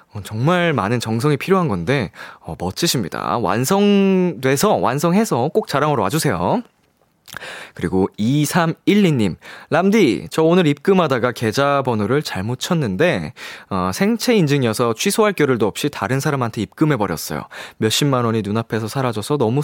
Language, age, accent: Korean, 20-39, native